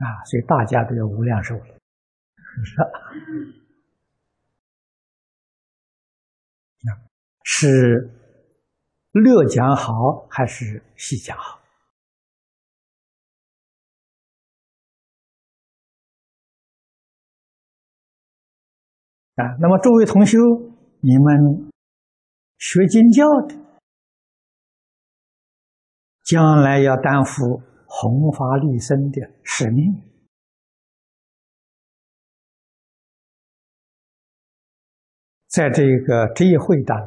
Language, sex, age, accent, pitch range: Chinese, male, 50-69, native, 115-170 Hz